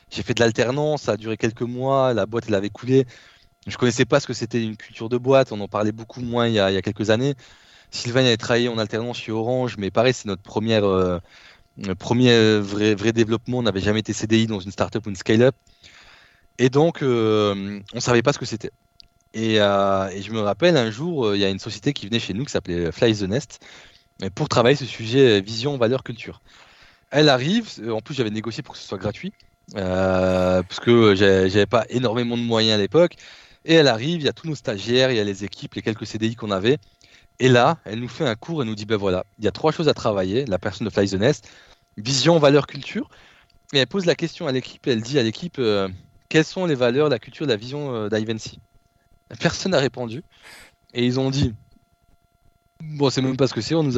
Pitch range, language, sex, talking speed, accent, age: 105-130 Hz, French, male, 240 wpm, French, 20-39